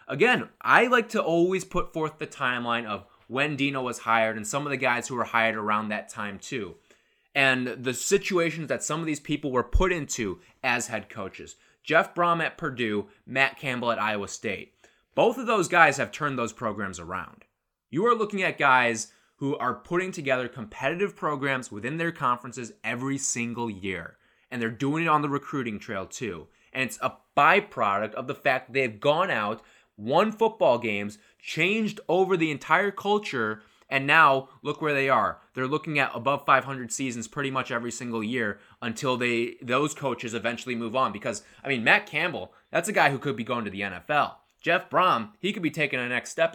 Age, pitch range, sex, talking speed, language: 20-39, 115-160 Hz, male, 195 wpm, English